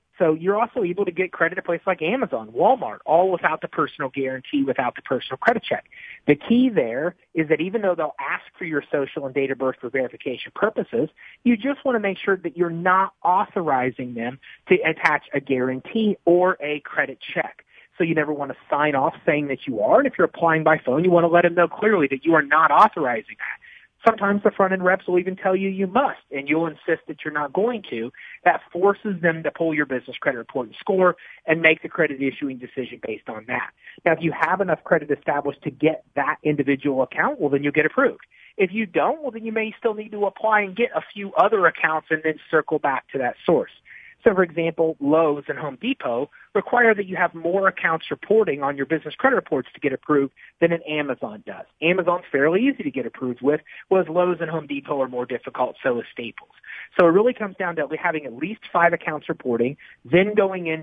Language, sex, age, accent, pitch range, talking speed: English, male, 40-59, American, 150-200 Hz, 225 wpm